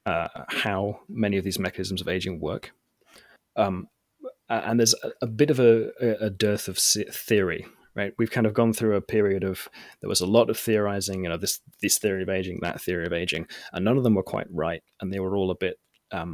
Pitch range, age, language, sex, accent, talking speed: 95-110 Hz, 30-49, English, male, British, 225 wpm